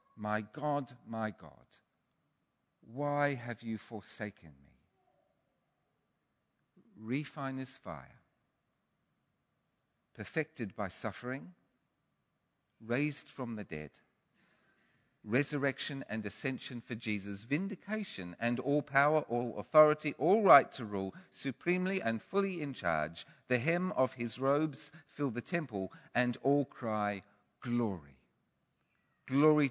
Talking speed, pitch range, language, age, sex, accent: 105 wpm, 105-145 Hz, English, 50-69, male, British